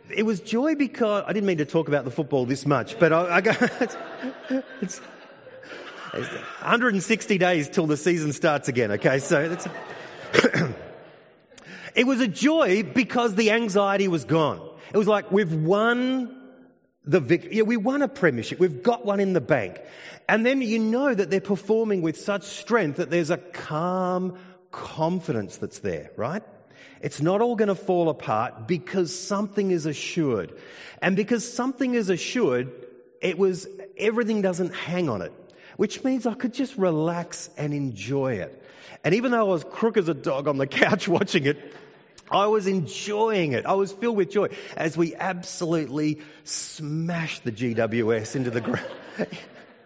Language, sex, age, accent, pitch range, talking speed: English, male, 30-49, Australian, 160-220 Hz, 165 wpm